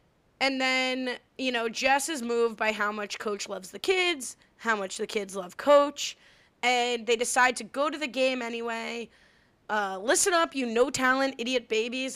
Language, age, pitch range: English, 20-39, 205-250 Hz